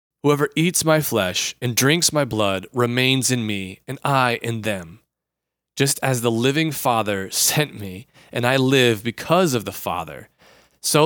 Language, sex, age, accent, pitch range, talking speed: English, male, 30-49, American, 105-140 Hz, 165 wpm